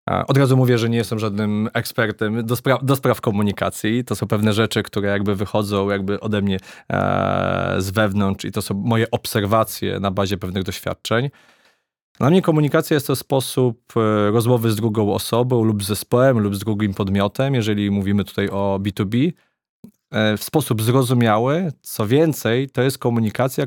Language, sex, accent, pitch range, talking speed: Polish, male, native, 105-130 Hz, 160 wpm